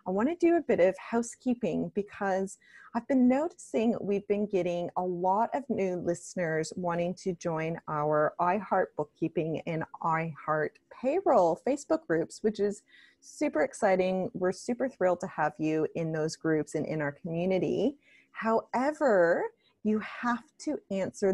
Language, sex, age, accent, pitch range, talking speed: English, female, 30-49, American, 170-220 Hz, 150 wpm